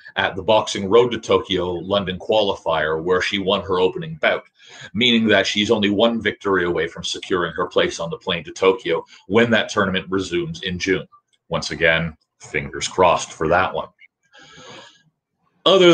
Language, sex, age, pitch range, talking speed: English, male, 40-59, 100-135 Hz, 165 wpm